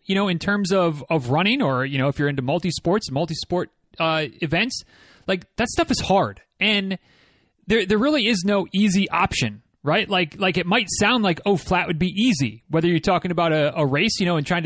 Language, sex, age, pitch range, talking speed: English, male, 30-49, 165-215 Hz, 215 wpm